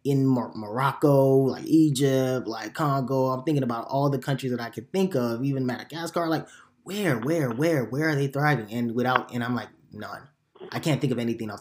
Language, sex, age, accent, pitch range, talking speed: English, male, 20-39, American, 115-145 Hz, 200 wpm